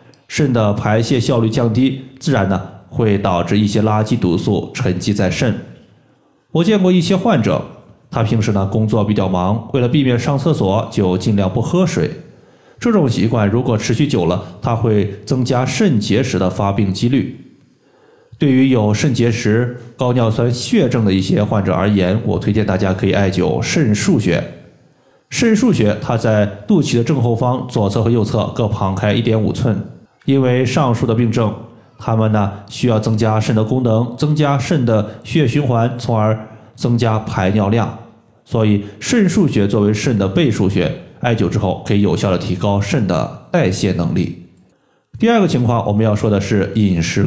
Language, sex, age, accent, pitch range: Chinese, male, 20-39, native, 105-125 Hz